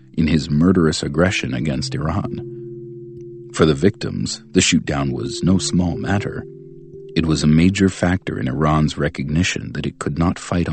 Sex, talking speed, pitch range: male, 155 wpm, 80-115 Hz